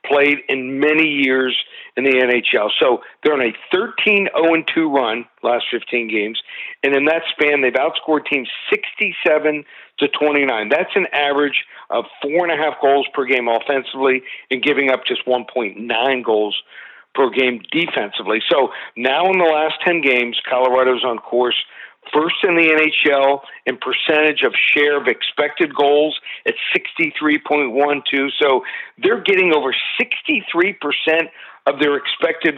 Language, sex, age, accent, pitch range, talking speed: English, male, 50-69, American, 130-160 Hz, 135 wpm